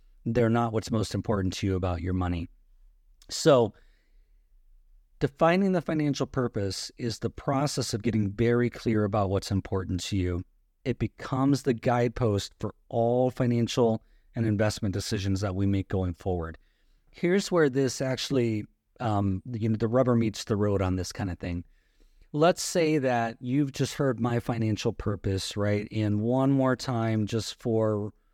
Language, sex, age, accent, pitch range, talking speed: English, male, 40-59, American, 100-130 Hz, 160 wpm